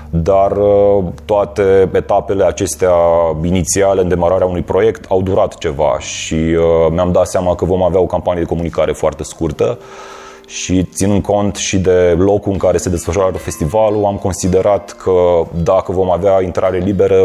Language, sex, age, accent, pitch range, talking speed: Romanian, male, 30-49, native, 85-110 Hz, 155 wpm